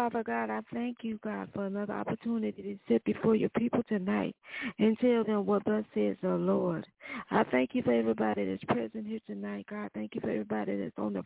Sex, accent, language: female, American, English